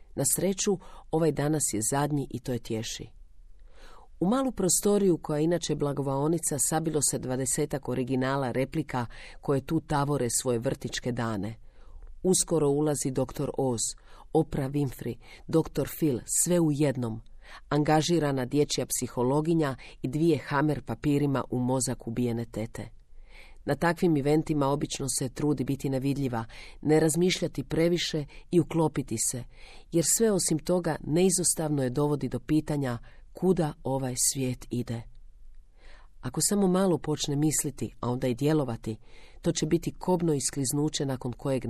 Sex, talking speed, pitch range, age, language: female, 130 wpm, 125-155 Hz, 40-59, Croatian